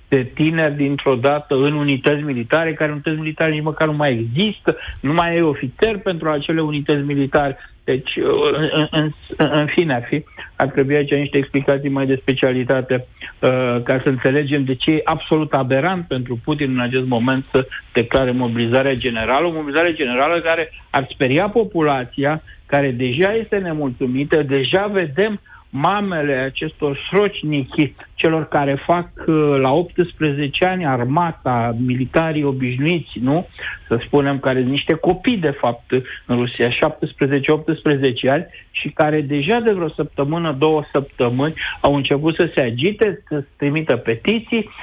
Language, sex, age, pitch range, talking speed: Romanian, male, 60-79, 135-160 Hz, 145 wpm